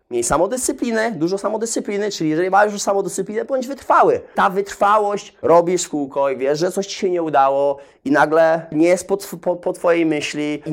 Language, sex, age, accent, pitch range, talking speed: Polish, male, 30-49, native, 165-210 Hz, 190 wpm